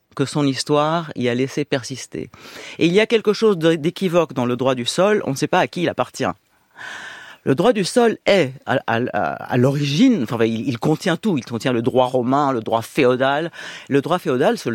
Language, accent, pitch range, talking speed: French, French, 125-195 Hz, 220 wpm